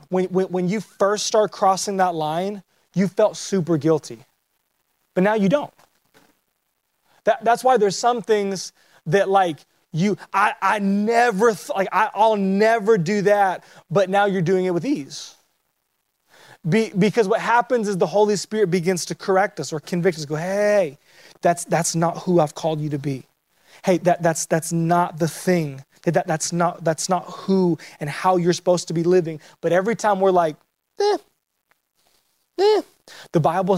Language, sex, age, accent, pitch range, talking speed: English, male, 20-39, American, 170-210 Hz, 170 wpm